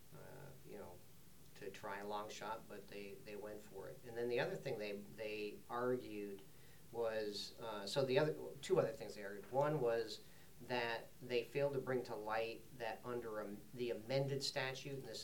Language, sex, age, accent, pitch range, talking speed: English, male, 40-59, American, 100-125 Hz, 195 wpm